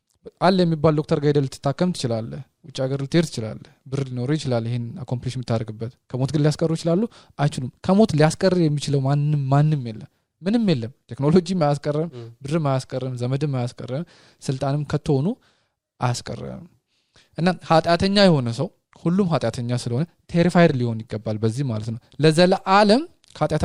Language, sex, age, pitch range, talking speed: English, male, 20-39, 125-160 Hz, 140 wpm